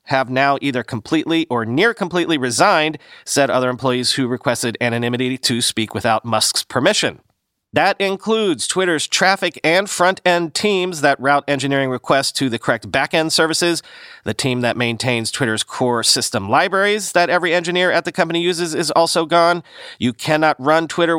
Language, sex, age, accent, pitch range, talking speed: English, male, 40-59, American, 125-175 Hz, 160 wpm